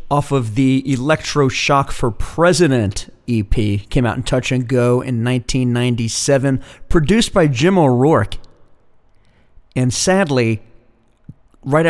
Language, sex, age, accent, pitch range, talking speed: English, male, 40-59, American, 110-140 Hz, 115 wpm